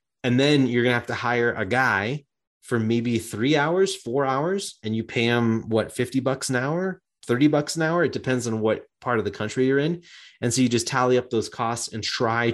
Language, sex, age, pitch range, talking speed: English, male, 30-49, 110-135 Hz, 235 wpm